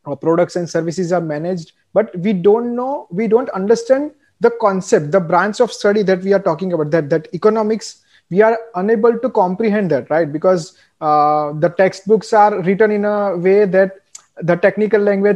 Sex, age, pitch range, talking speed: male, 20-39, 175-210 Hz, 190 wpm